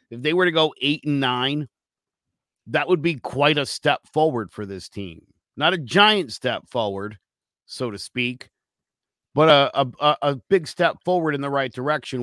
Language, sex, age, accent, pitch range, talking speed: English, male, 50-69, American, 125-160 Hz, 180 wpm